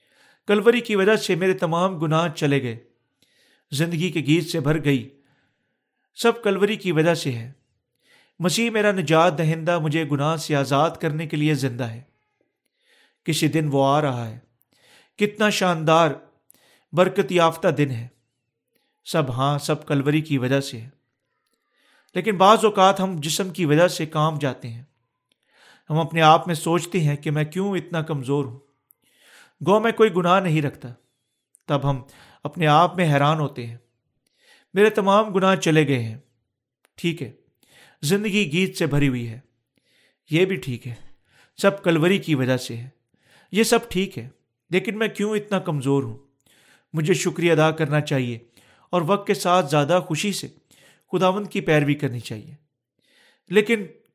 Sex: male